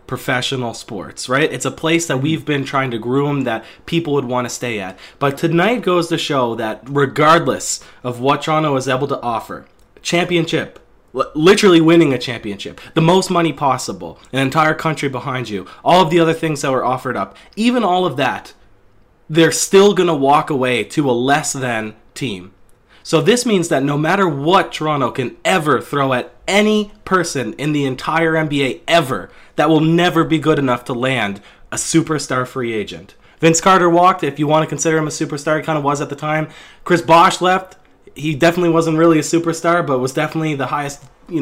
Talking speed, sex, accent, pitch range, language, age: 195 wpm, male, American, 125-165 Hz, English, 20-39